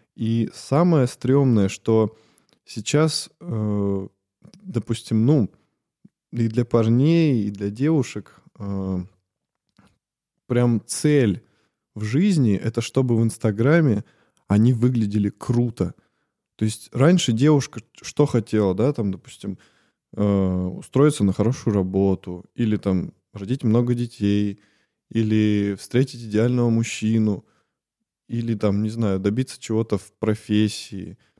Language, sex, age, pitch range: Russian, male, 20-39, 105-140 Hz